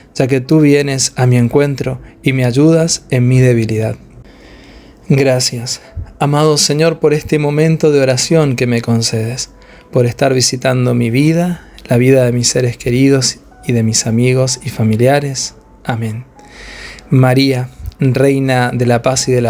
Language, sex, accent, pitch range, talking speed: Spanish, male, Argentinian, 125-160 Hz, 150 wpm